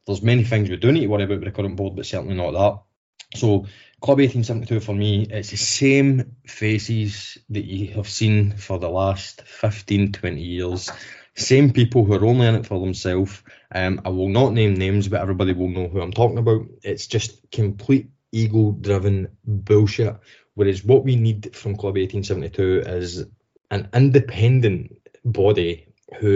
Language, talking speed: English, 170 wpm